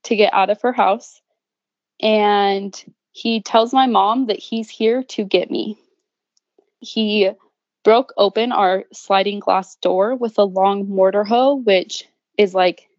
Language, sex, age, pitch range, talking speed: English, female, 20-39, 190-220 Hz, 150 wpm